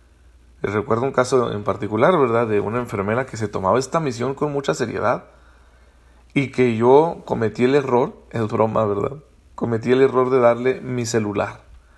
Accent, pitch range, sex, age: Mexican, 105-140 Hz, male, 40-59